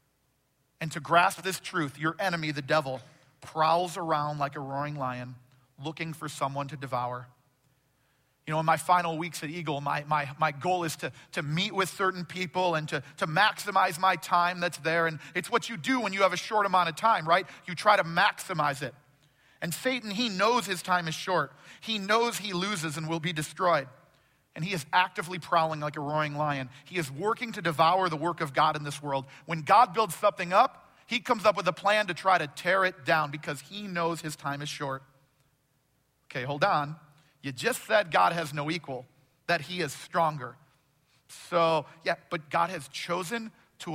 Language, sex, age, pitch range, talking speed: English, male, 40-59, 145-185 Hz, 200 wpm